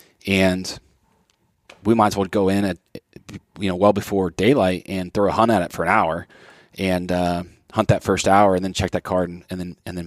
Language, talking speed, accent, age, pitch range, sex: English, 225 wpm, American, 30-49, 90-110 Hz, male